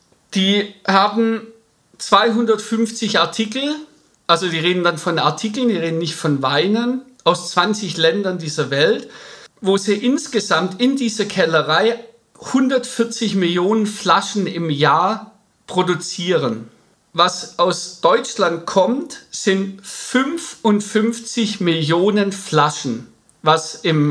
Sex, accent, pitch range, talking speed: male, German, 170-230 Hz, 105 wpm